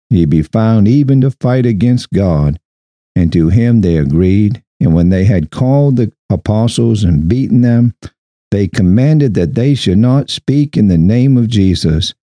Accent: American